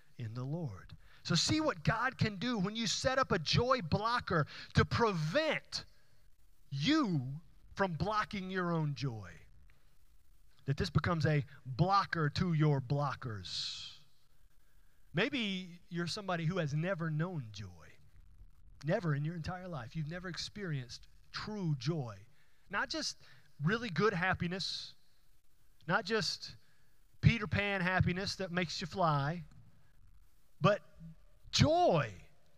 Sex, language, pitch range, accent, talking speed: male, English, 140-195 Hz, American, 120 wpm